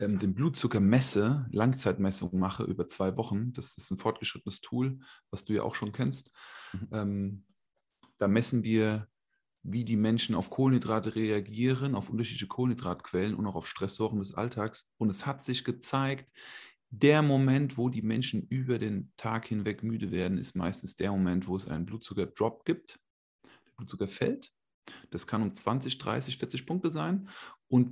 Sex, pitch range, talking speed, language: male, 100-125 Hz, 160 wpm, German